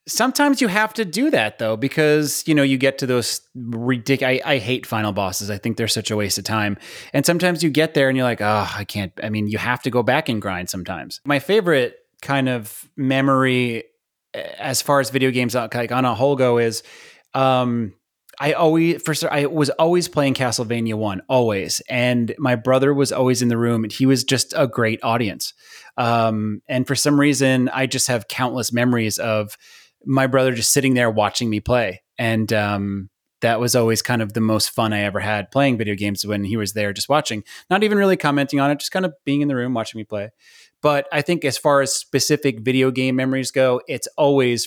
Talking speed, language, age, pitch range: 215 wpm, English, 30-49, 110-140 Hz